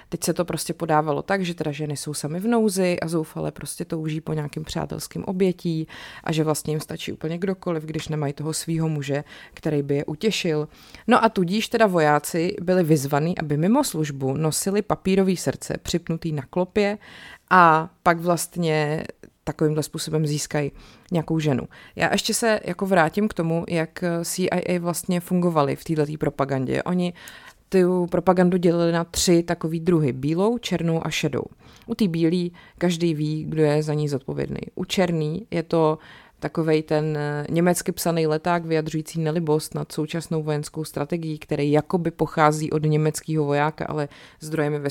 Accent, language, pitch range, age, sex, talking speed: native, Czech, 155-180 Hz, 30-49, female, 160 wpm